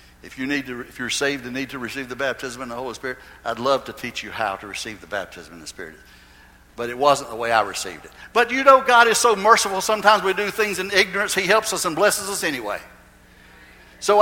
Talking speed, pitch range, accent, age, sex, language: 250 wpm, 135-215 Hz, American, 60-79, male, English